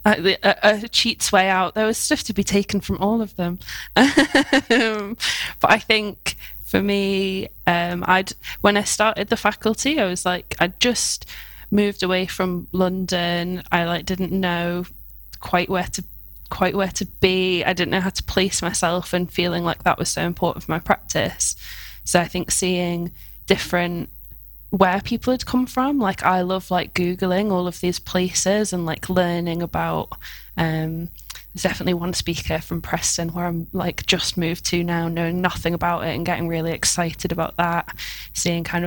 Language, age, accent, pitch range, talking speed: English, 10-29, British, 170-190 Hz, 180 wpm